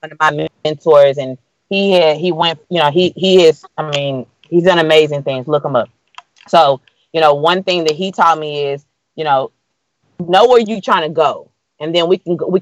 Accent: American